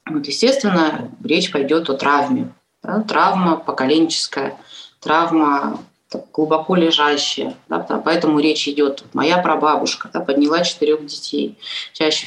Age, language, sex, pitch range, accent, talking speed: 20-39, Russian, female, 135-165 Hz, native, 125 wpm